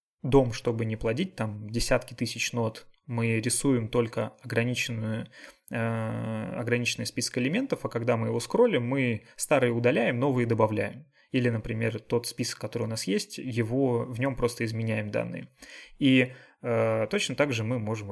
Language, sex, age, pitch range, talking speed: Russian, male, 20-39, 115-130 Hz, 155 wpm